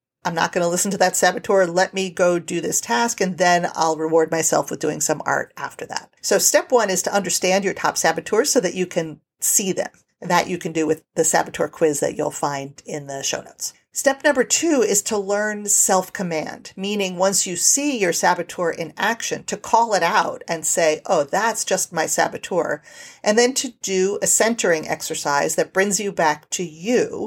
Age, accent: 40-59, American